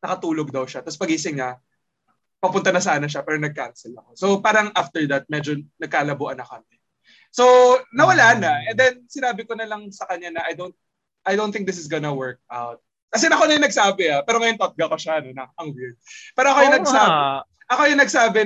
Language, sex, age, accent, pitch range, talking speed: Filipino, male, 20-39, native, 145-215 Hz, 210 wpm